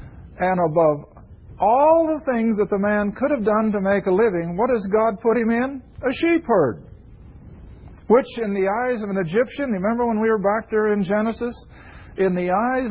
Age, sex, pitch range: 50-69, male, 195-250 Hz